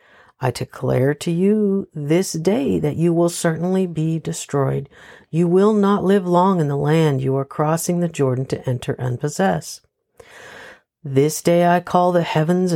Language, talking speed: English, 165 wpm